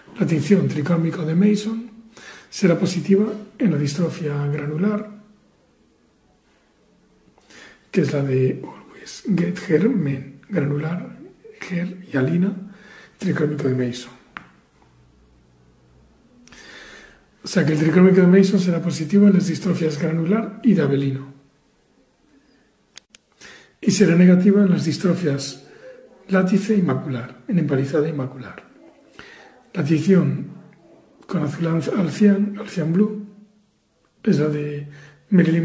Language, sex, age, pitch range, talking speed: Spanish, male, 60-79, 150-200 Hz, 115 wpm